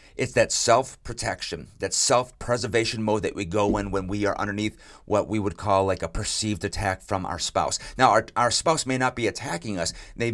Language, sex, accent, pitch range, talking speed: English, male, American, 100-120 Hz, 205 wpm